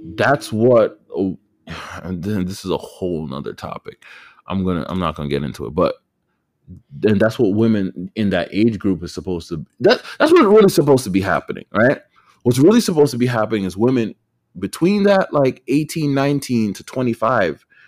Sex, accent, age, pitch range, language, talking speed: male, American, 30-49, 90-120 Hz, English, 190 wpm